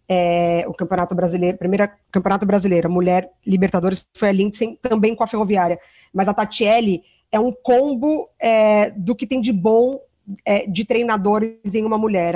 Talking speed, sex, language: 165 wpm, female, Portuguese